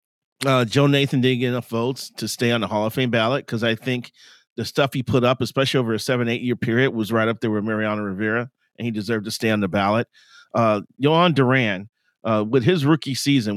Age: 40-59